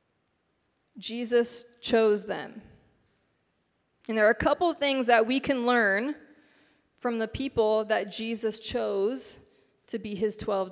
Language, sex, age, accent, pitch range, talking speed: English, female, 20-39, American, 215-275 Hz, 135 wpm